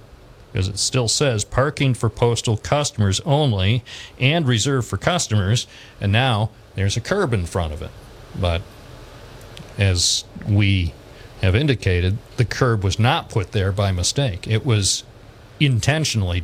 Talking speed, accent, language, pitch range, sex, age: 140 wpm, American, English, 105-125 Hz, male, 50-69